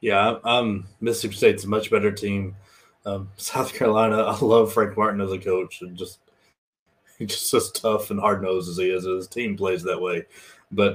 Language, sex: English, male